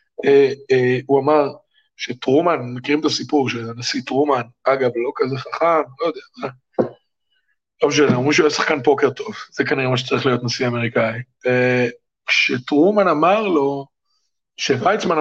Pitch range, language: 125-205 Hz, Hebrew